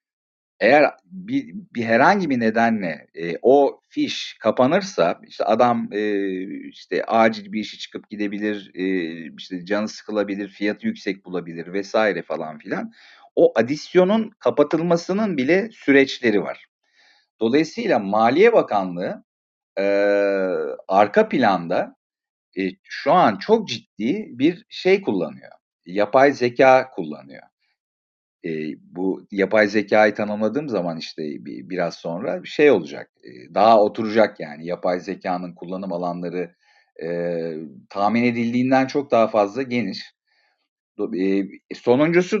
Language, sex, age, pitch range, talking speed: Turkish, male, 50-69, 100-145 Hz, 110 wpm